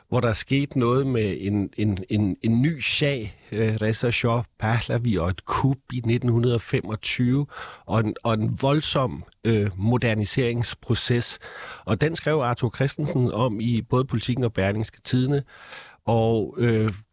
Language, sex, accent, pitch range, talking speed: Danish, male, native, 100-125 Hz, 135 wpm